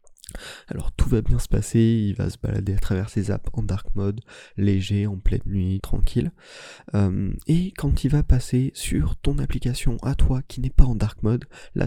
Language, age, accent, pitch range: French, 20-39, French, 100-125 Hz